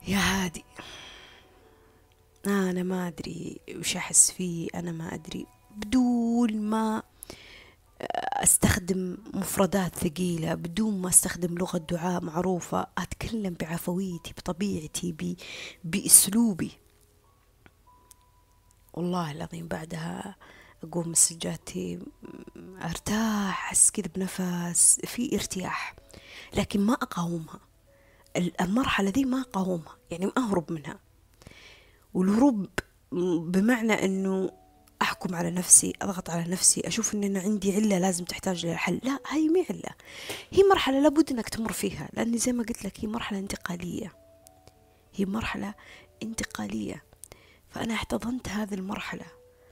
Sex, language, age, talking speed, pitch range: female, Arabic, 20-39, 110 wpm, 165-210 Hz